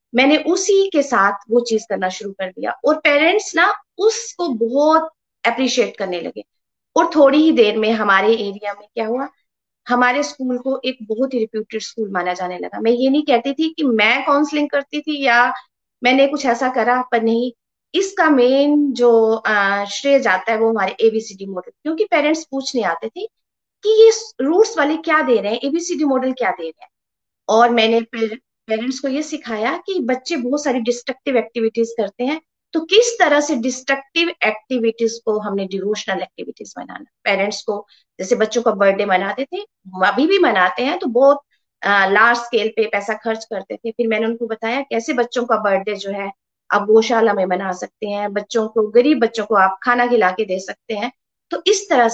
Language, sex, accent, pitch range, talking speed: Hindi, female, native, 215-285 Hz, 190 wpm